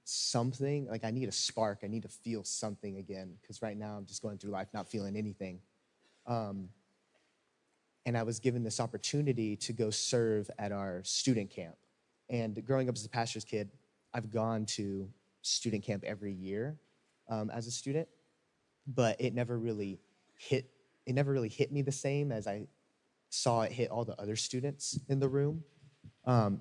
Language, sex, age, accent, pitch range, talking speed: English, male, 30-49, American, 105-120 Hz, 175 wpm